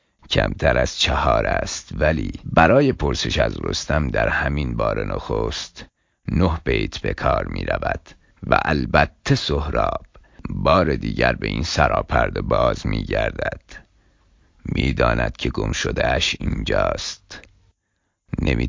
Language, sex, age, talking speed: Persian, male, 50-69, 115 wpm